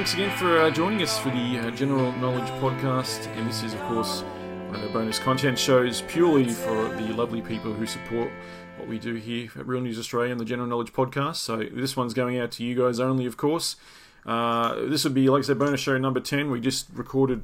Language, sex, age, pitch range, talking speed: English, male, 30-49, 115-135 Hz, 225 wpm